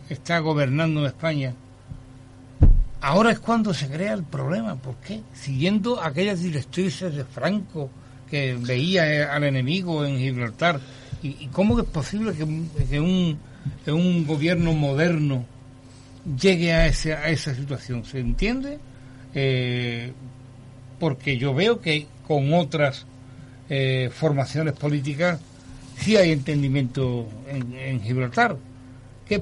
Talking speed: 120 wpm